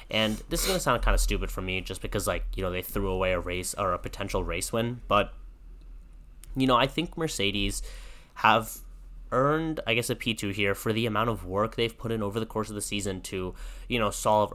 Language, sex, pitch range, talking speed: English, male, 95-115 Hz, 235 wpm